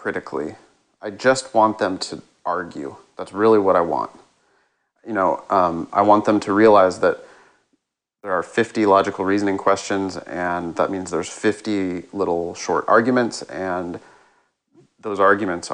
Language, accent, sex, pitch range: English, American, male, 95-110 Hz